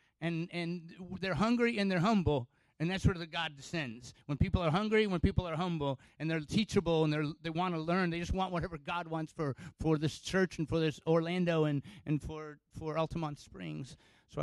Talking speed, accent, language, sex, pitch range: 235 wpm, American, English, male, 125-165 Hz